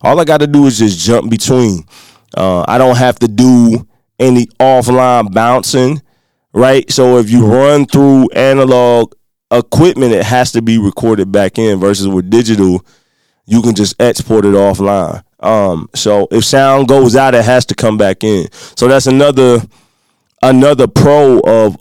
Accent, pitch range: American, 105-130 Hz